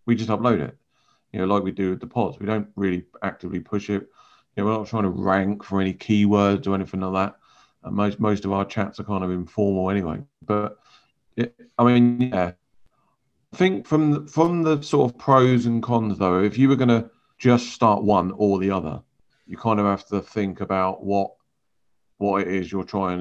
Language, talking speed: English, 215 wpm